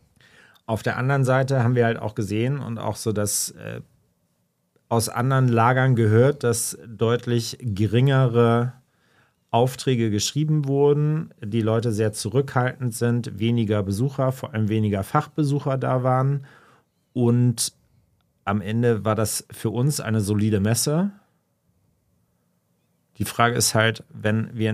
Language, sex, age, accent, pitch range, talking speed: German, male, 40-59, German, 110-130 Hz, 130 wpm